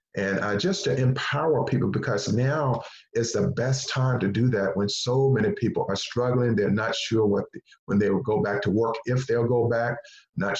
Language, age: English, 40-59